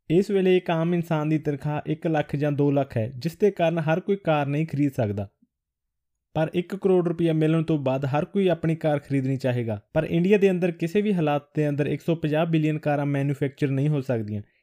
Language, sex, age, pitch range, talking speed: Punjabi, male, 20-39, 140-165 Hz, 205 wpm